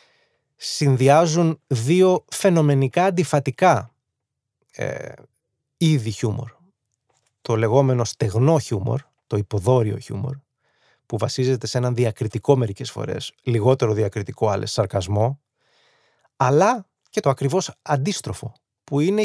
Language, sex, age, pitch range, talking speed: Greek, male, 20-39, 115-145 Hz, 100 wpm